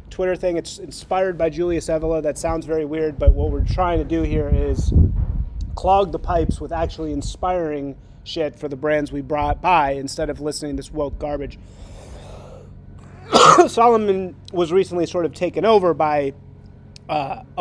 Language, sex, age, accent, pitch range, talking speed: English, male, 30-49, American, 125-160 Hz, 165 wpm